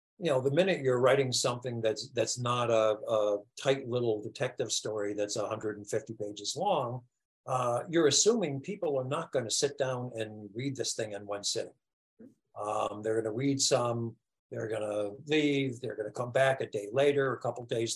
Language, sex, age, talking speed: English, male, 50-69, 195 wpm